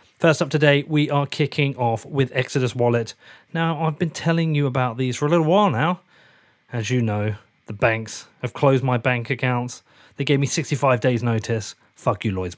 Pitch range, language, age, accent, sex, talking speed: 115-150 Hz, English, 30-49, British, male, 195 wpm